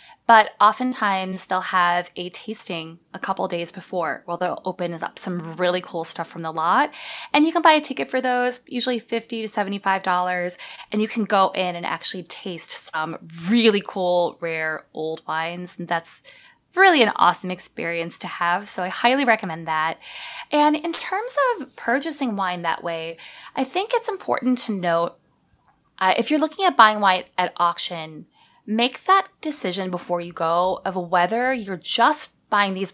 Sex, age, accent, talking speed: female, 20-39, American, 175 wpm